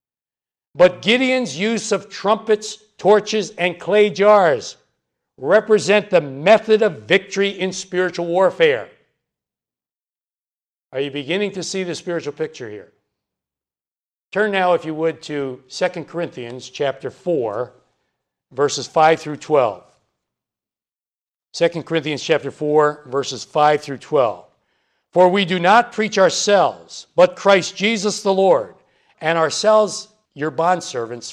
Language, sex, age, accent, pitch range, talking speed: English, male, 60-79, American, 165-205 Hz, 120 wpm